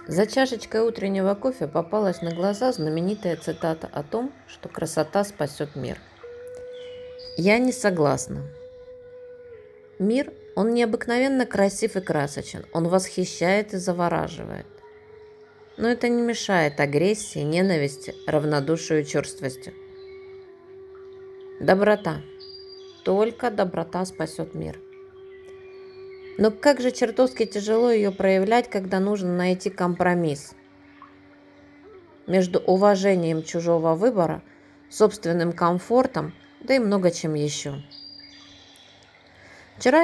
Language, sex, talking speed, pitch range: Russian, female, 95 wpm, 170-260 Hz